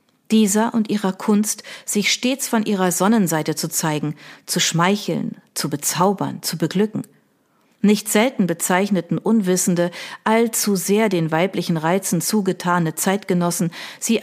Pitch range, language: 175-215 Hz, German